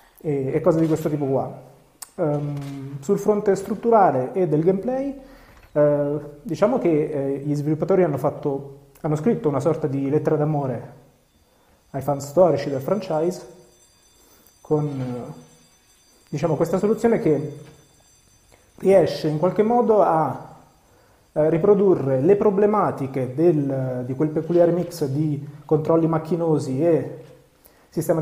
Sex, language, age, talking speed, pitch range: male, Italian, 30-49, 125 wpm, 140-165 Hz